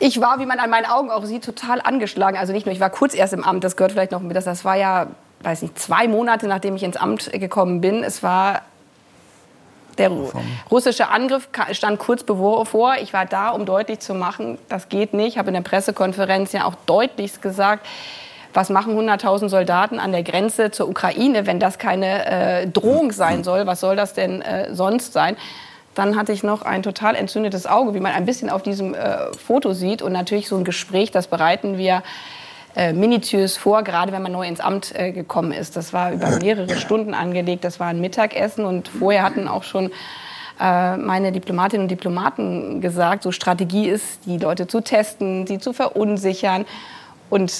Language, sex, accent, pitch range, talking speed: German, female, German, 185-220 Hz, 200 wpm